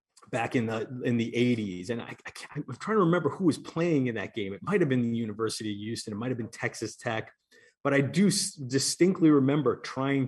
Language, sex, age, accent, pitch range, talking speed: English, male, 30-49, American, 110-130 Hz, 240 wpm